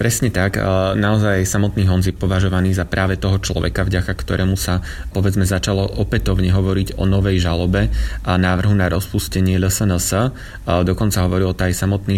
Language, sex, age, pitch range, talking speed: Slovak, male, 30-49, 90-100 Hz, 150 wpm